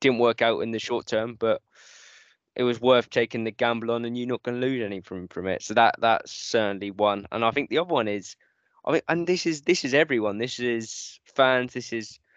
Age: 10-29